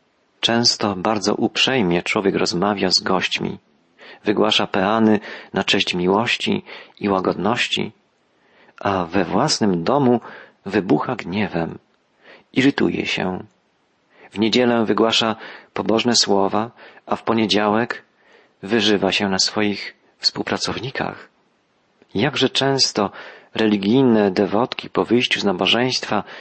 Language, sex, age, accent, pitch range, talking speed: Polish, male, 40-59, native, 105-130 Hz, 100 wpm